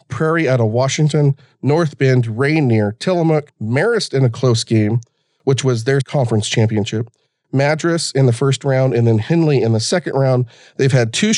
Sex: male